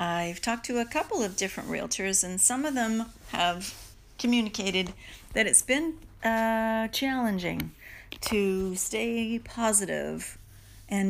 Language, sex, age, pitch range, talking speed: English, female, 40-59, 175-225 Hz, 125 wpm